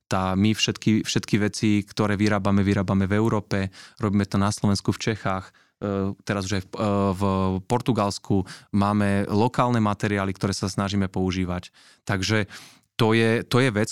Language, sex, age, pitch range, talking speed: Slovak, male, 20-39, 105-120 Hz, 145 wpm